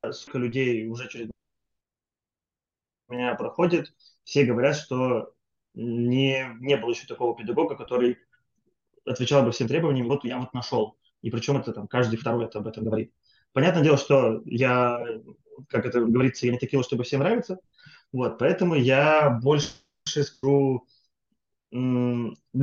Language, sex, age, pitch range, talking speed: Russian, male, 20-39, 115-135 Hz, 140 wpm